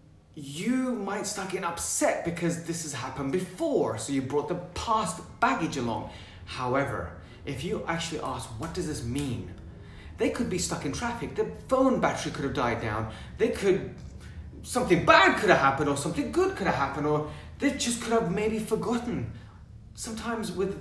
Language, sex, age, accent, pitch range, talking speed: English, male, 30-49, British, 130-190 Hz, 175 wpm